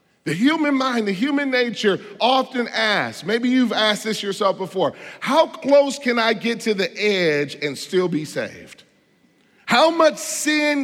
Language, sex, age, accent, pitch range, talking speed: English, male, 40-59, American, 135-215 Hz, 160 wpm